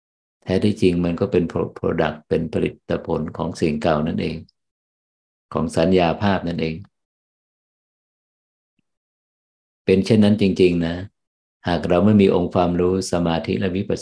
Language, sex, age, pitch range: Thai, male, 50-69, 85-100 Hz